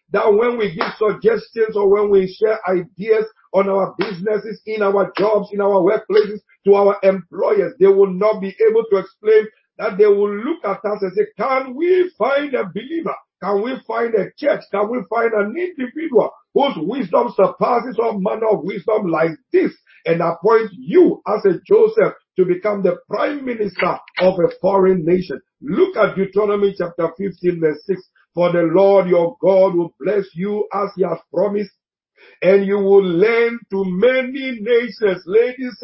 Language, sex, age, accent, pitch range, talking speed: English, male, 50-69, Nigerian, 195-245 Hz, 170 wpm